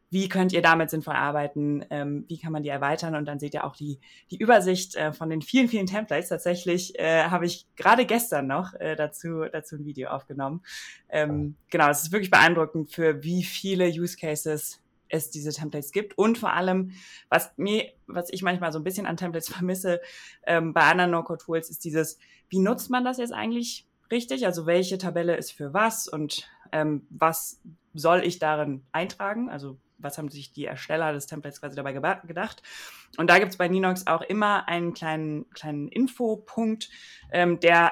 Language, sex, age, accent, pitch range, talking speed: German, female, 20-39, German, 150-185 Hz, 195 wpm